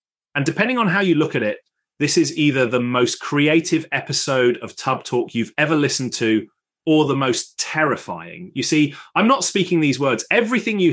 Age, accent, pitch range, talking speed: 30-49, British, 110-145 Hz, 190 wpm